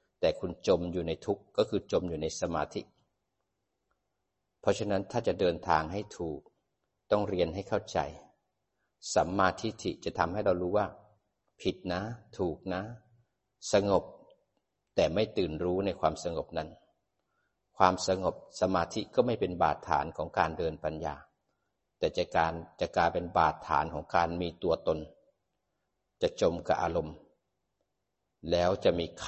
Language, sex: Thai, male